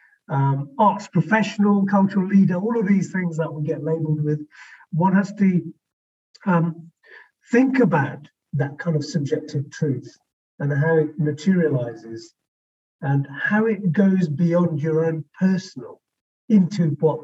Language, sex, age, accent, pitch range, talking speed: English, male, 50-69, British, 140-175 Hz, 135 wpm